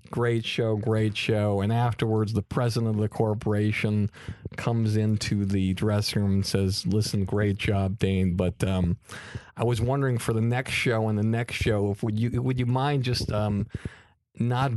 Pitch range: 95-115 Hz